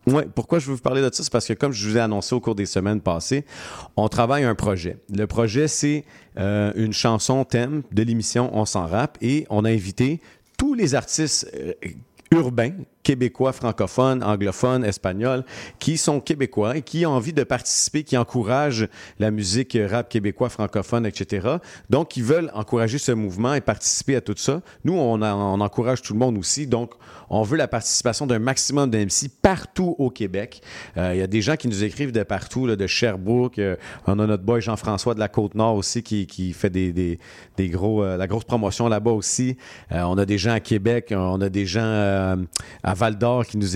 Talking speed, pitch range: 205 wpm, 105-130 Hz